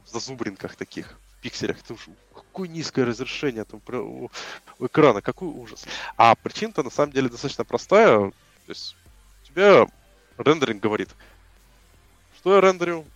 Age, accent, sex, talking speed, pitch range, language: 20-39, native, male, 135 wpm, 105-140 Hz, Russian